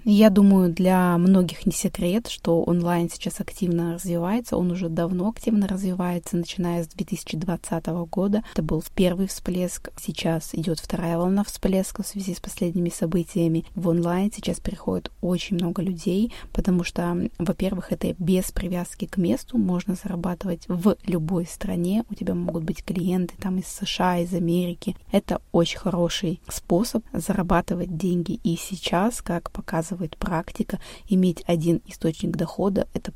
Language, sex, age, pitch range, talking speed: Russian, female, 20-39, 175-195 Hz, 140 wpm